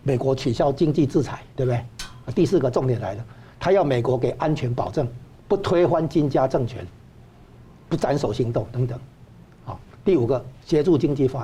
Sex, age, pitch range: male, 60-79, 125-155 Hz